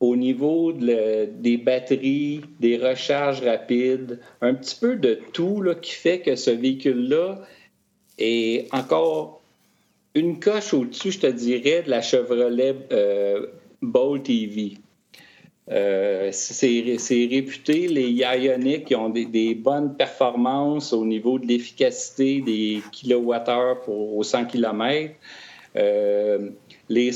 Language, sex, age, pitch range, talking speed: French, male, 50-69, 120-160 Hz, 130 wpm